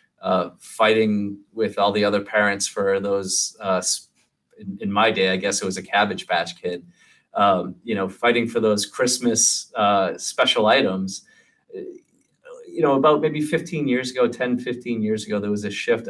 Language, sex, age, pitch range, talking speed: English, male, 30-49, 100-145 Hz, 175 wpm